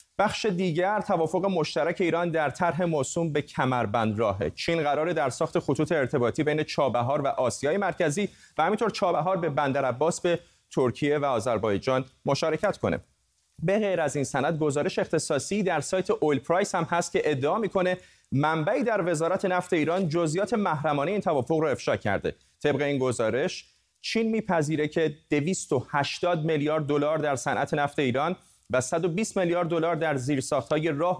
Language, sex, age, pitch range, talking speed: Persian, male, 30-49, 140-180 Hz, 155 wpm